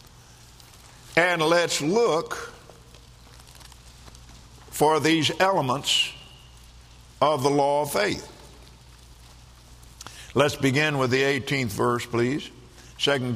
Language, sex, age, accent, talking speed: English, male, 60-79, American, 85 wpm